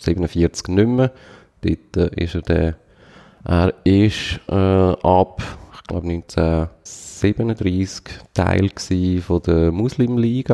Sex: male